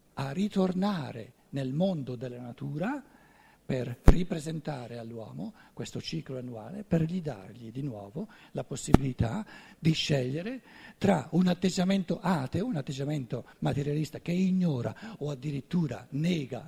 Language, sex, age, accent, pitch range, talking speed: Italian, male, 60-79, native, 125-170 Hz, 120 wpm